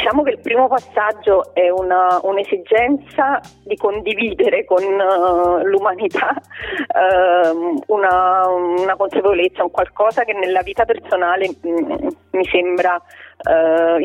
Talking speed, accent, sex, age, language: 115 wpm, native, female, 30-49, Italian